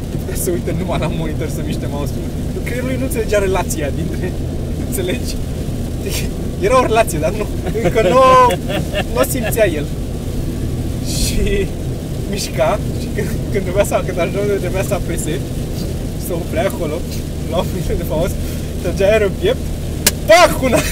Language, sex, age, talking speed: Romanian, male, 20-39, 120 wpm